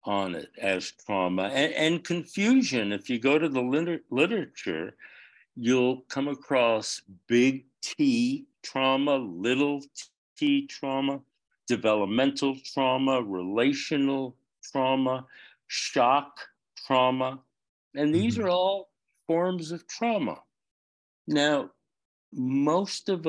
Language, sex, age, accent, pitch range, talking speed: English, male, 60-79, American, 115-150 Hz, 100 wpm